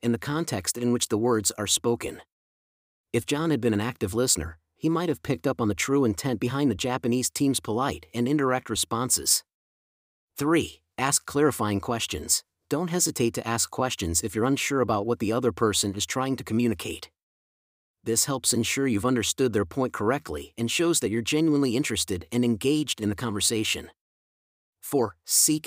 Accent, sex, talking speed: American, male, 175 wpm